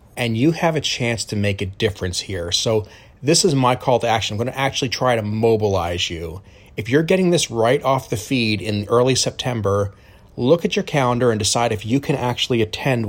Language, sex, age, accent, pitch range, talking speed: English, male, 30-49, American, 110-150 Hz, 215 wpm